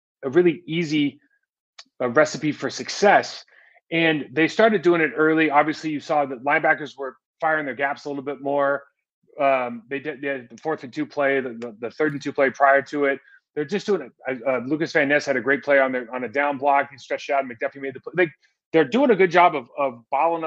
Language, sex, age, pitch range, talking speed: English, male, 30-49, 130-155 Hz, 235 wpm